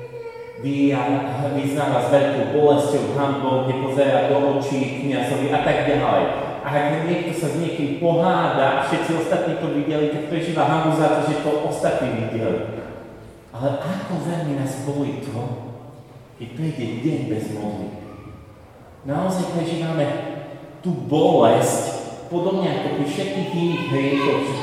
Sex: male